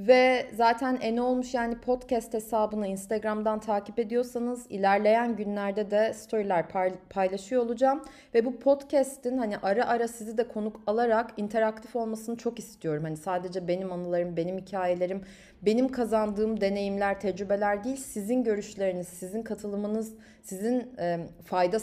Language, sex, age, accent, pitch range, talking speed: Turkish, female, 30-49, native, 185-240 Hz, 130 wpm